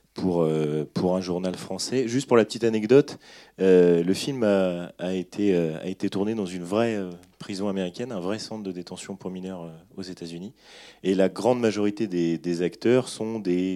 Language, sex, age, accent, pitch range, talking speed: French, male, 30-49, French, 85-100 Hz, 190 wpm